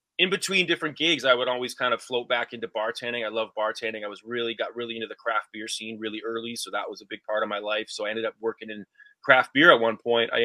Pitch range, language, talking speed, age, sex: 110-145 Hz, English, 280 wpm, 30-49, male